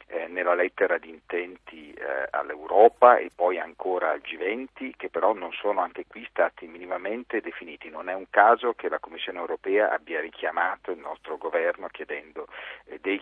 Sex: male